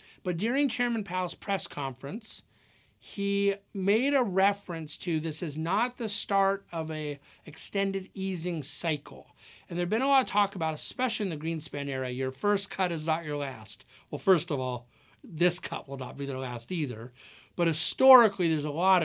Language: English